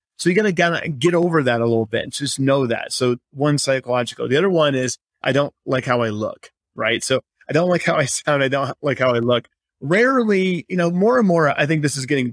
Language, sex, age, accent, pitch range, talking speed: English, male, 30-49, American, 125-155 Hz, 255 wpm